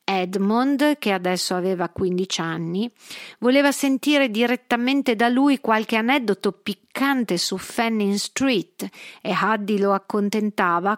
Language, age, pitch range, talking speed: Italian, 50-69, 195-245 Hz, 115 wpm